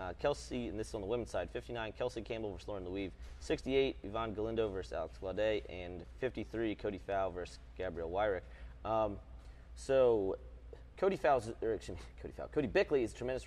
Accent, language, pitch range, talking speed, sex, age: American, English, 85-115 Hz, 185 wpm, male, 30-49